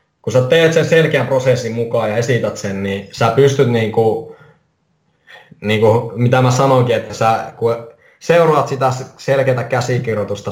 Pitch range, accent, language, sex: 110-130 Hz, native, Finnish, male